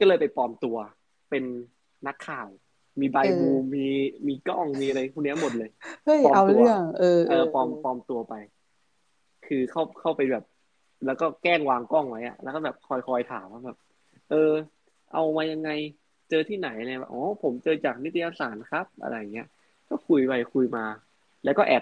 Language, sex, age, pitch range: Thai, male, 20-39, 120-155 Hz